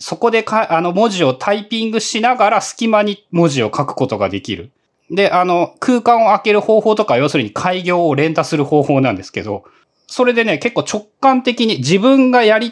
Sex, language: male, Japanese